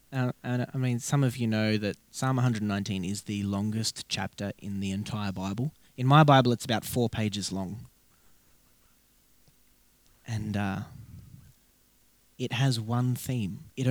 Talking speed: 145 wpm